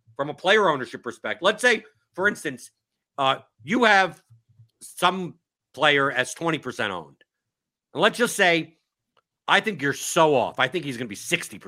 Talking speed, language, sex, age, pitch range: 165 wpm, English, male, 50-69, 150-195 Hz